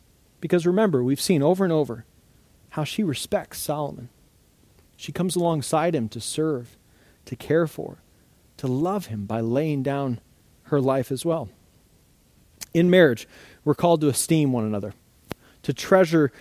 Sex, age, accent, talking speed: male, 40-59, American, 145 wpm